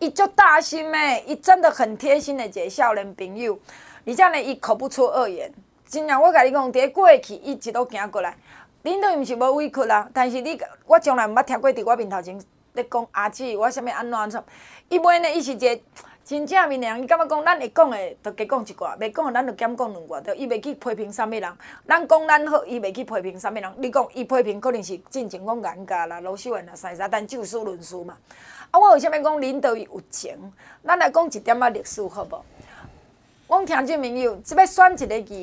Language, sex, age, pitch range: Chinese, female, 30-49, 225-315 Hz